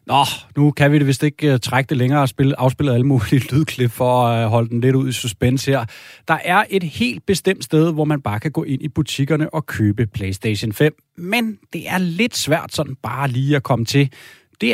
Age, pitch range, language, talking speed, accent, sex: 30-49, 120-155 Hz, Danish, 230 wpm, native, male